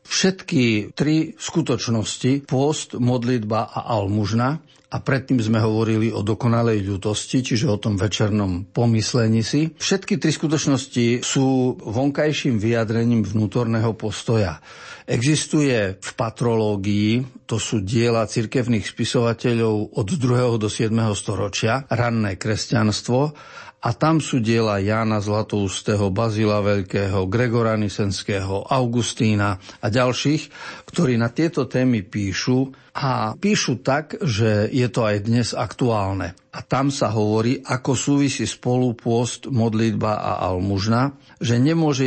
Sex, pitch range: male, 110-130 Hz